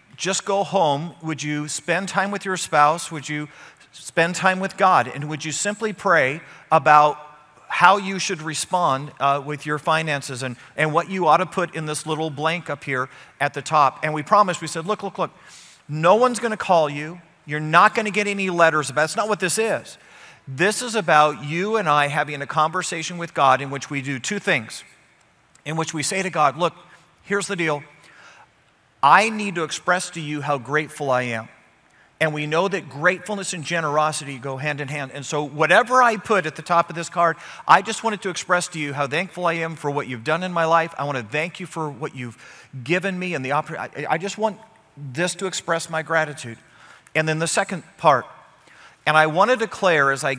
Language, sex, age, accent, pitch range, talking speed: English, male, 40-59, American, 145-180 Hz, 220 wpm